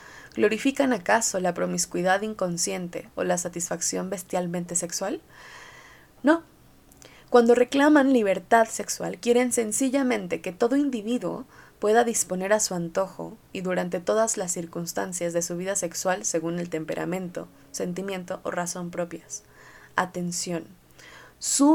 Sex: female